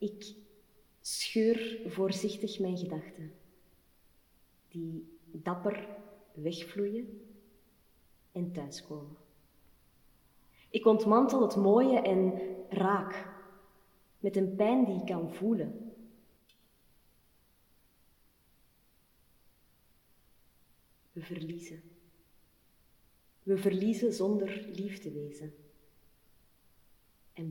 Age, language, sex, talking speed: 20-39, Dutch, female, 70 wpm